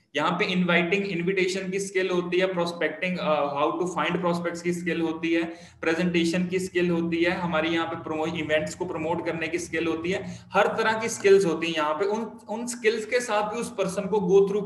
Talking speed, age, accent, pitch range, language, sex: 205 wpm, 20-39, native, 170-200 Hz, Hindi, male